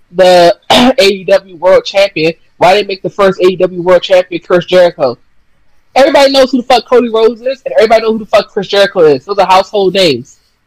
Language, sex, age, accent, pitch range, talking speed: English, female, 20-39, American, 195-270 Hz, 200 wpm